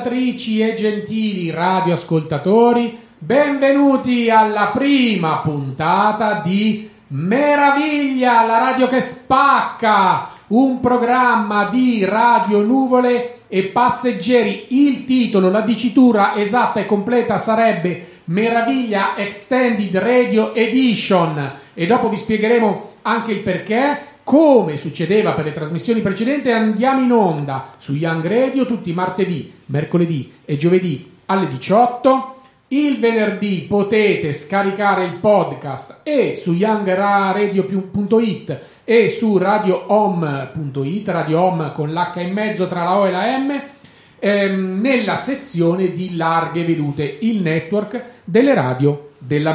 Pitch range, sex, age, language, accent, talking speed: 175-245 Hz, male, 40-59, Italian, native, 110 wpm